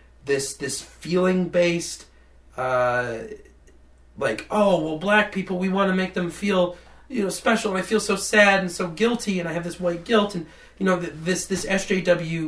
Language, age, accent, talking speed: English, 30-49, American, 195 wpm